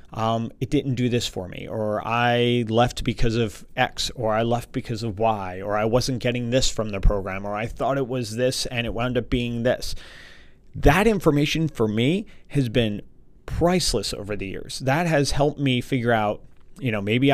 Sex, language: male, English